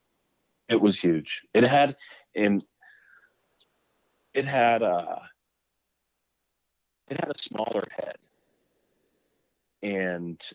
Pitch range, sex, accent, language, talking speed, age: 80-100 Hz, male, American, English, 85 wpm, 40-59